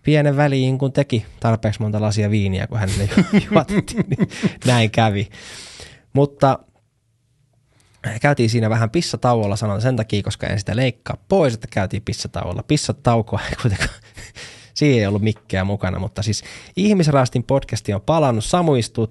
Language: Finnish